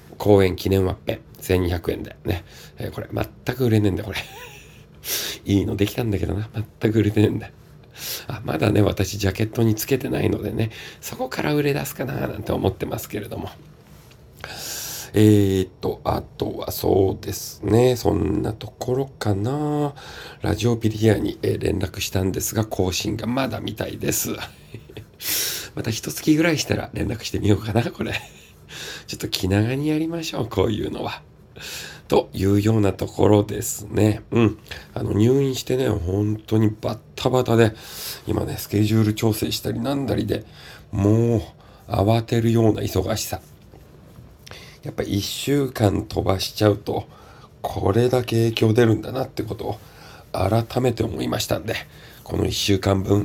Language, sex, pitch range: Japanese, male, 100-115 Hz